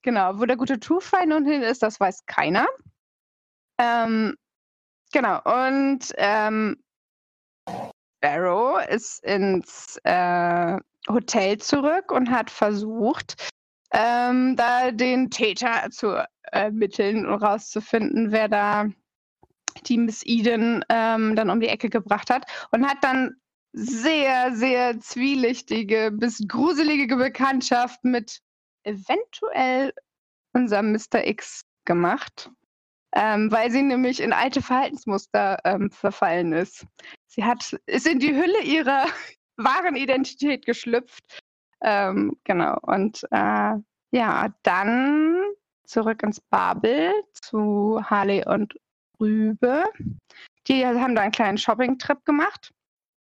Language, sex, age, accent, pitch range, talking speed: German, female, 20-39, German, 215-270 Hz, 115 wpm